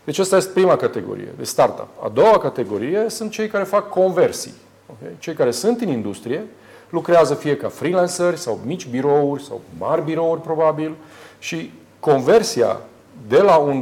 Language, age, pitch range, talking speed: Romanian, 40-59, 130-185 Hz, 155 wpm